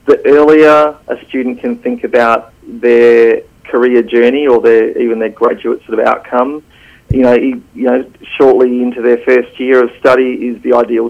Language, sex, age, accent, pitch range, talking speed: English, male, 40-59, Australian, 120-130 Hz, 175 wpm